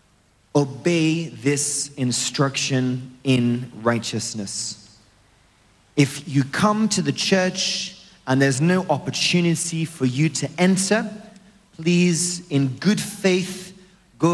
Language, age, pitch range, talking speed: English, 30-49, 125-170 Hz, 100 wpm